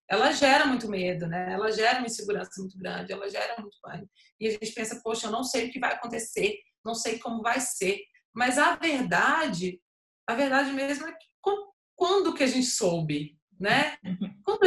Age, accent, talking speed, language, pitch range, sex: 20-39, Brazilian, 190 wpm, Portuguese, 195-275 Hz, female